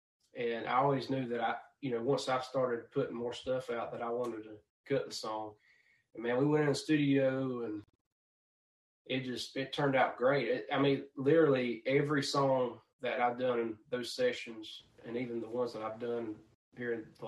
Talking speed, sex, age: 200 wpm, male, 20-39